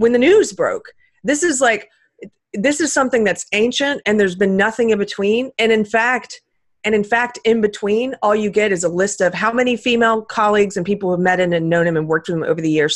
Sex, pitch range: female, 175-265 Hz